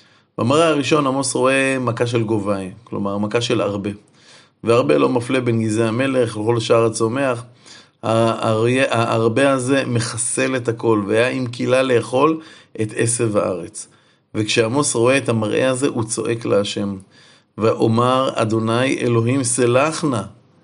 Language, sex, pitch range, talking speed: Hebrew, male, 115-150 Hz, 130 wpm